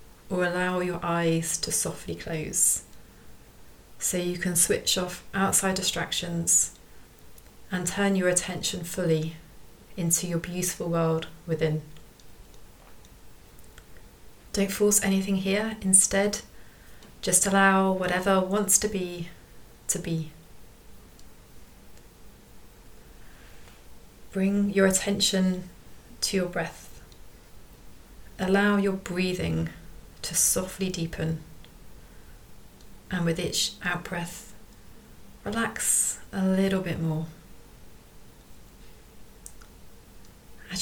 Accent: British